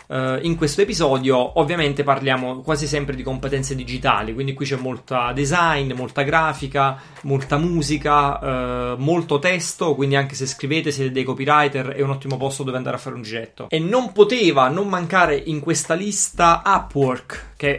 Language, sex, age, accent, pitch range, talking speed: Italian, male, 30-49, native, 135-165 Hz, 165 wpm